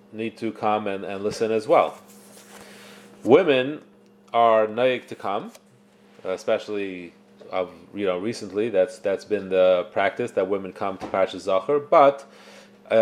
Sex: male